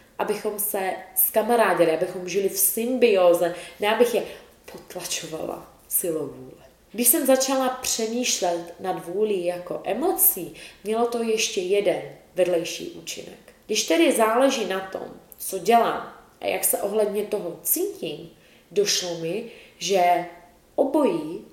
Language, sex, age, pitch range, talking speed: Czech, female, 20-39, 175-215 Hz, 125 wpm